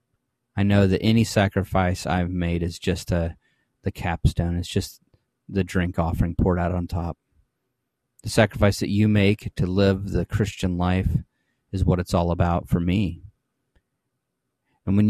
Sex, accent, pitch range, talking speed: male, American, 90-110 Hz, 160 wpm